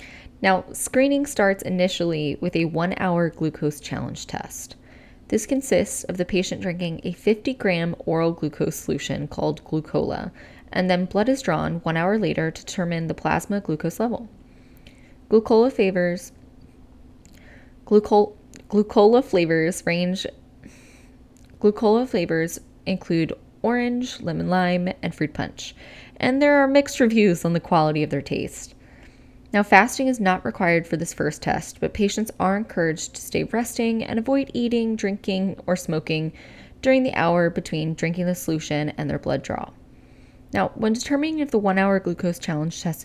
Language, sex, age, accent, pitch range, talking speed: English, female, 10-29, American, 165-225 Hz, 150 wpm